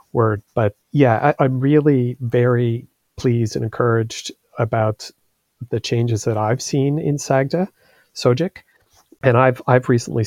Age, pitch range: 40-59, 110-125 Hz